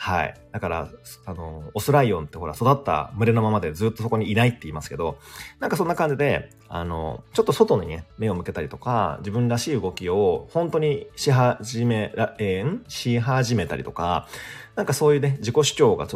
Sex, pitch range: male, 85-135 Hz